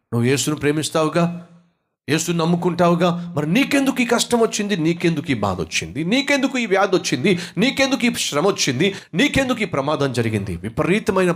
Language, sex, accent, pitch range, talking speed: Telugu, male, native, 125-175 Hz, 145 wpm